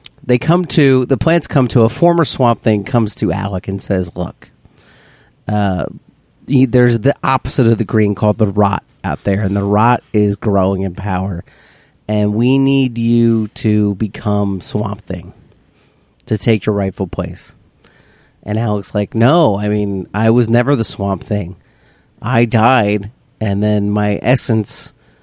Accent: American